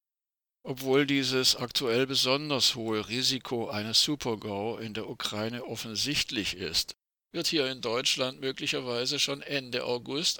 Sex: male